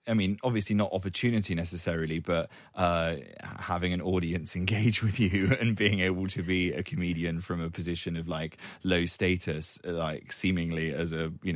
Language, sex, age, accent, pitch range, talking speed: English, male, 20-39, British, 80-90 Hz, 170 wpm